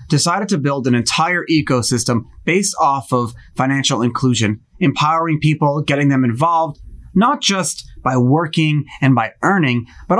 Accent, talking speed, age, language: American, 140 wpm, 30-49, English